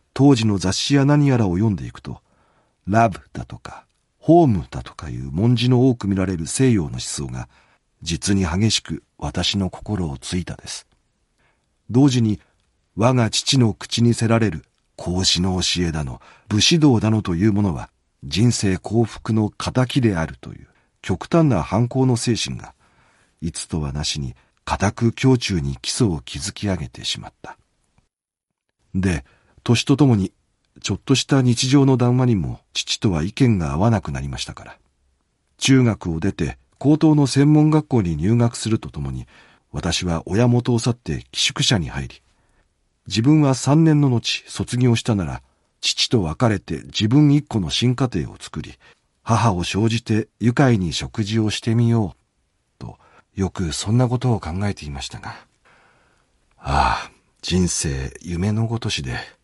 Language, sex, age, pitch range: Japanese, male, 40-59, 85-120 Hz